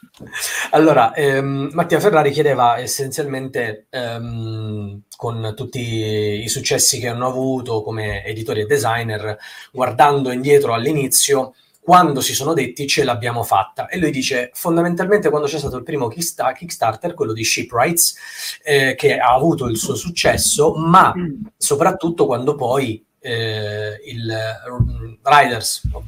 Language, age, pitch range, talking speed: Italian, 30-49, 110-150 Hz, 135 wpm